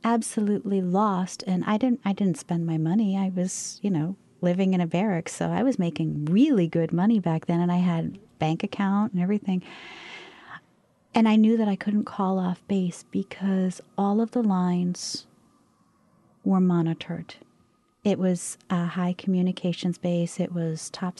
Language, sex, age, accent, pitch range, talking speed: English, female, 40-59, American, 175-200 Hz, 165 wpm